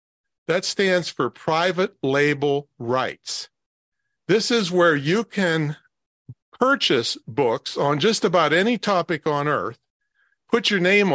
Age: 50-69